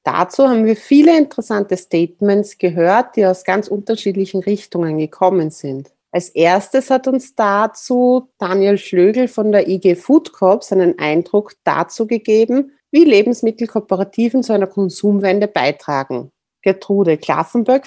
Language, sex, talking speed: German, female, 130 wpm